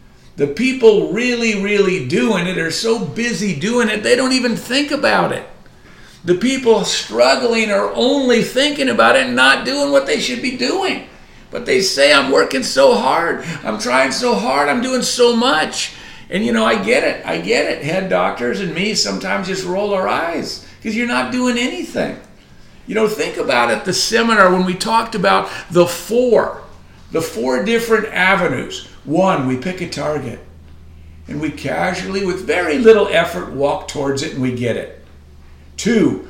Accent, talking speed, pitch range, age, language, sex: American, 180 wpm, 160-225 Hz, 50-69, English, male